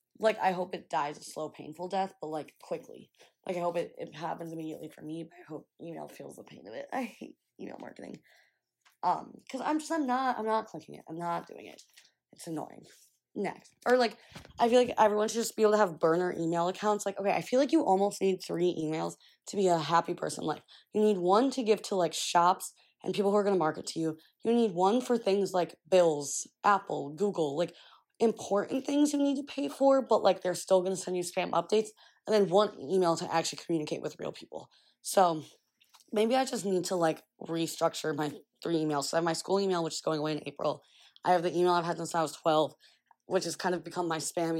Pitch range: 165-205 Hz